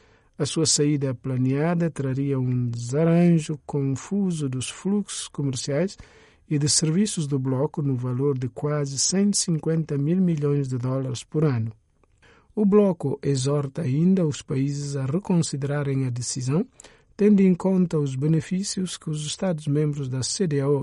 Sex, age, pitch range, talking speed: male, 50-69, 130-175 Hz, 135 wpm